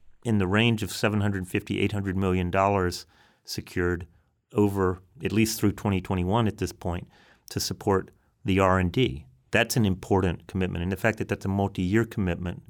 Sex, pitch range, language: male, 95-115 Hz, English